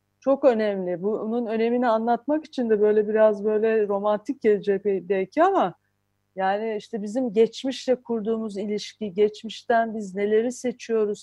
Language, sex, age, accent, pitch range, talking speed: Turkish, female, 40-59, native, 205-255 Hz, 130 wpm